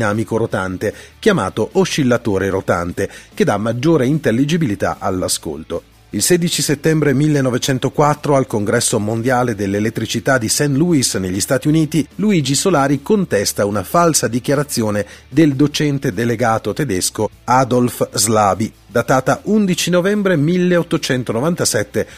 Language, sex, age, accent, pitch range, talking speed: Italian, male, 40-59, native, 110-155 Hz, 110 wpm